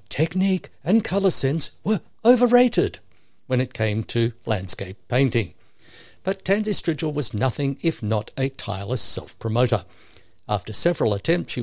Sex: male